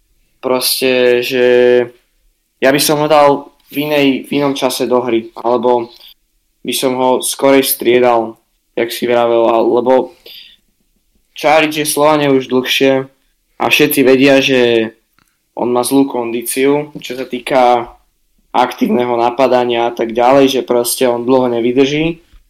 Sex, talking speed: male, 135 wpm